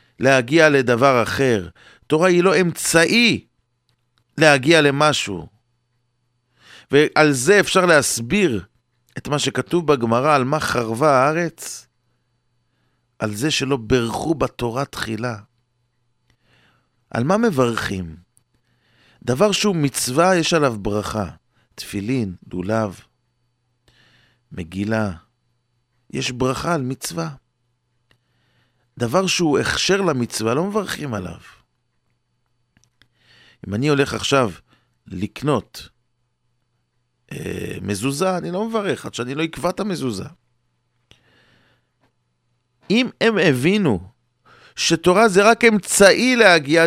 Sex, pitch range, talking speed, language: male, 125-170 Hz, 90 wpm, English